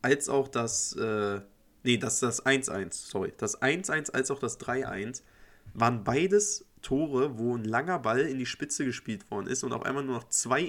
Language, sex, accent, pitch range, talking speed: German, male, German, 120-160 Hz, 190 wpm